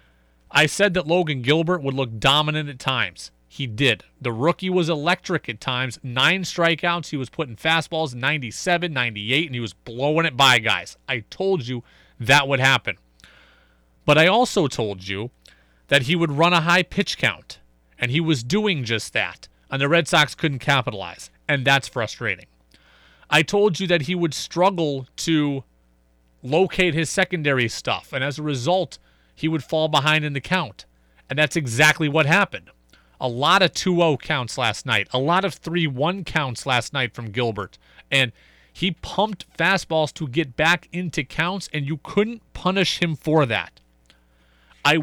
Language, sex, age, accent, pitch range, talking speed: English, male, 30-49, American, 115-170 Hz, 170 wpm